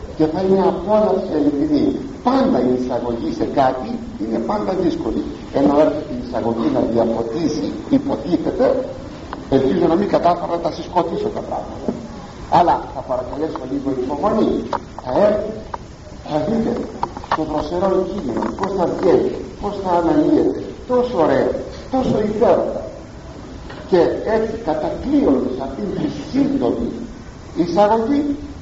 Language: Greek